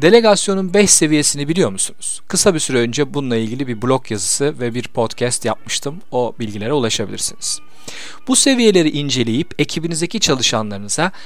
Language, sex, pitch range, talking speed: Turkish, male, 115-165 Hz, 140 wpm